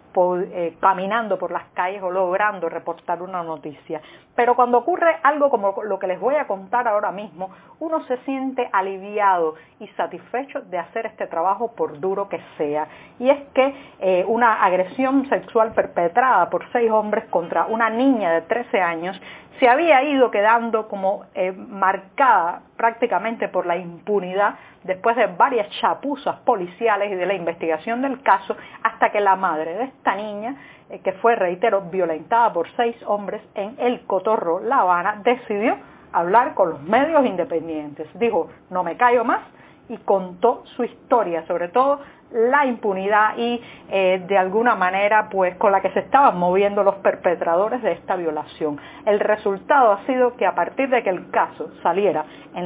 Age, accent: 40-59, American